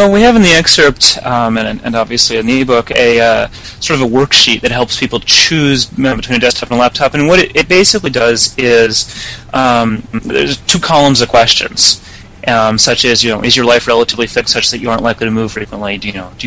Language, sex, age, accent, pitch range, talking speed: English, male, 30-49, American, 110-125 Hz, 235 wpm